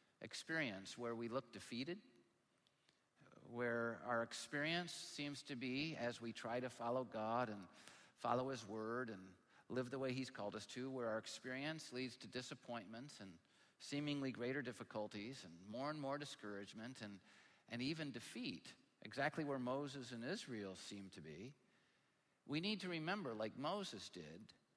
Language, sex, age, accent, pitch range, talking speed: English, male, 50-69, American, 115-150 Hz, 155 wpm